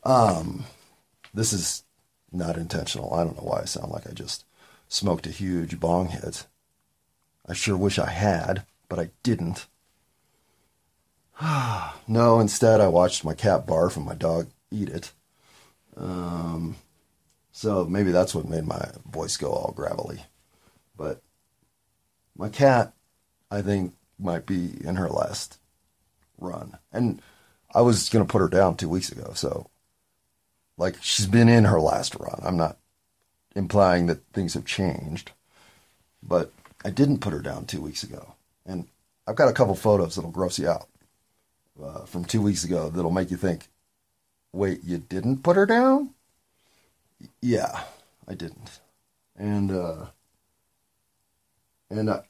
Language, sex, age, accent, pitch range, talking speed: English, male, 40-59, American, 85-110 Hz, 150 wpm